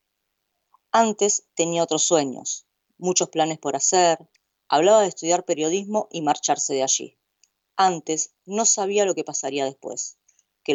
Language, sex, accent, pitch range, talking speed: Spanish, female, American, 145-180 Hz, 135 wpm